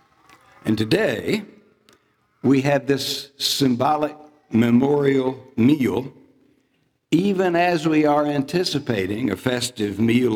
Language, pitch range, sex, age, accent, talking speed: English, 110-145 Hz, male, 60-79, American, 95 wpm